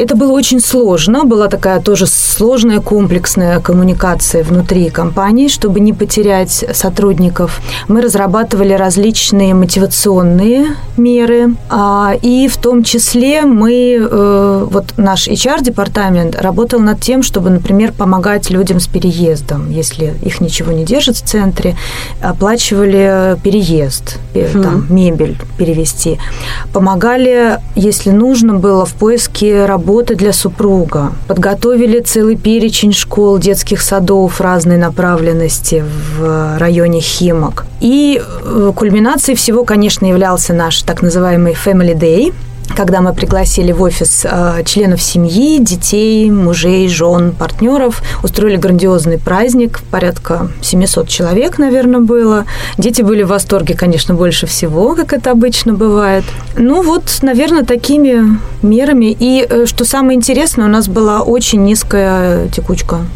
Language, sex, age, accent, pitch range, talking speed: Russian, female, 30-49, native, 175-230 Hz, 120 wpm